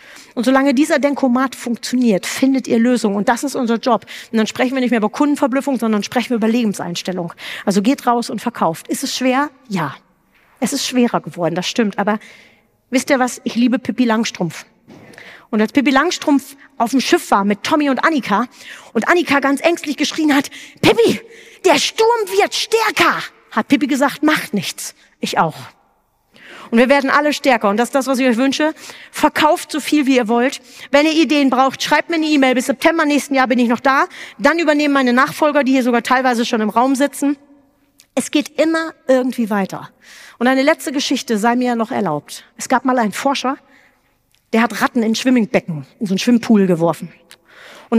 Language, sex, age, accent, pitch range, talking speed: German, female, 40-59, German, 225-285 Hz, 195 wpm